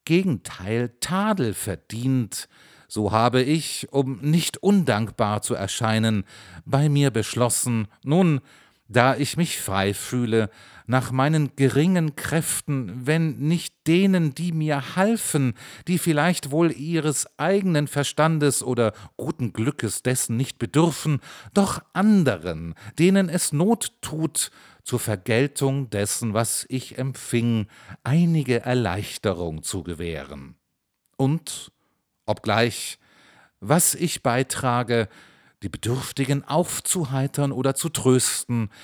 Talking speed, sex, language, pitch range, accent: 105 wpm, male, German, 110-155 Hz, German